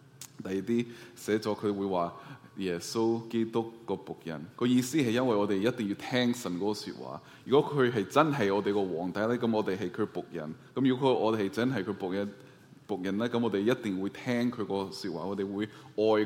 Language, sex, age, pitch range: Chinese, male, 20-39, 100-130 Hz